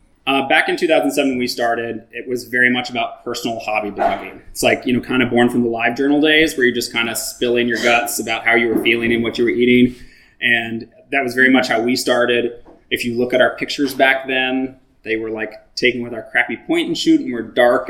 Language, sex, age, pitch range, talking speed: English, male, 20-39, 115-135 Hz, 250 wpm